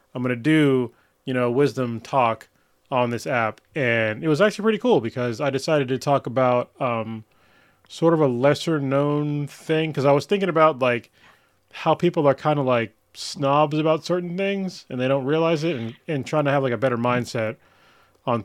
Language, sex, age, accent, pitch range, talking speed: English, male, 30-49, American, 115-145 Hz, 200 wpm